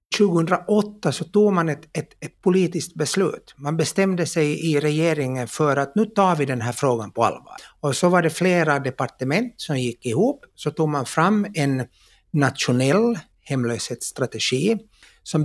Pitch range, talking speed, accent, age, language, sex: 130-185 Hz, 160 wpm, Finnish, 60-79, Swedish, male